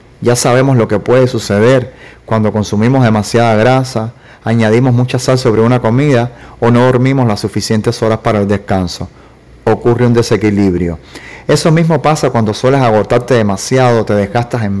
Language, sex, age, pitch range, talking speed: Spanish, male, 30-49, 105-130 Hz, 155 wpm